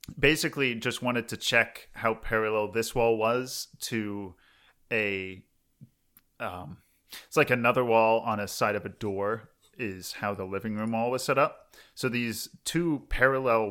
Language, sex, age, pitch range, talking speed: English, male, 30-49, 100-120 Hz, 160 wpm